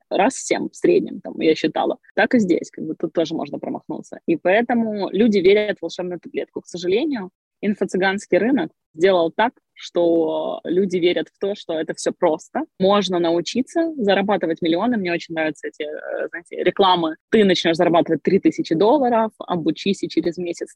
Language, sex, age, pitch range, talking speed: Ukrainian, female, 20-39, 170-220 Hz, 165 wpm